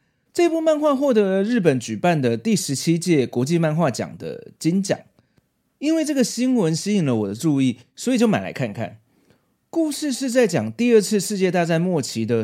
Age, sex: 30-49, male